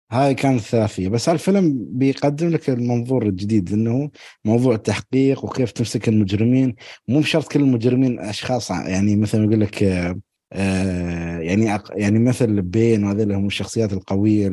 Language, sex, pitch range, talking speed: Arabic, male, 100-140 Hz, 130 wpm